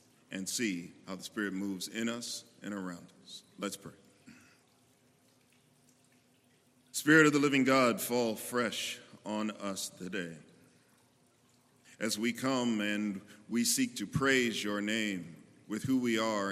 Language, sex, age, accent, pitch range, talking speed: English, male, 40-59, American, 100-120 Hz, 135 wpm